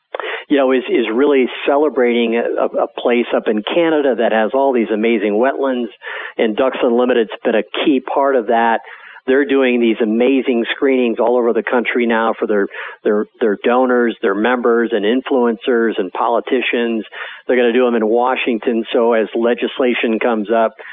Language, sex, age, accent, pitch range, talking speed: English, male, 50-69, American, 110-125 Hz, 170 wpm